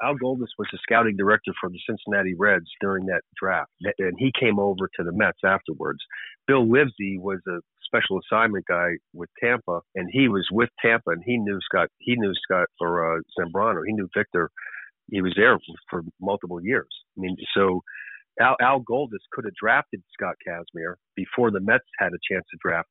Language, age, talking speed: English, 50-69, 190 wpm